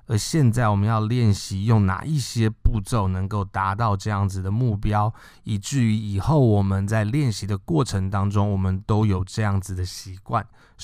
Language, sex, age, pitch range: Chinese, male, 20-39, 100-120 Hz